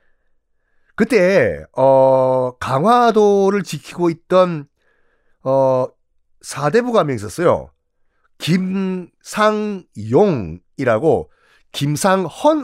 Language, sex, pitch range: Korean, male, 130-210 Hz